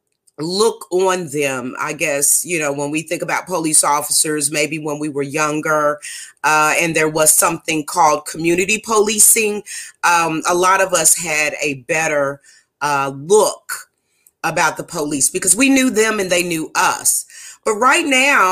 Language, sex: English, female